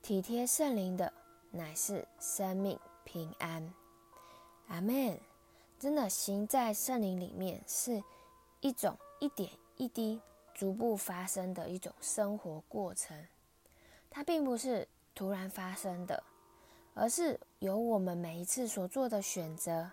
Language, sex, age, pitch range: Chinese, female, 20-39, 170-230 Hz